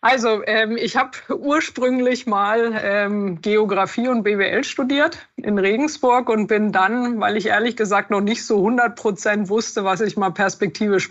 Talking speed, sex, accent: 160 wpm, female, German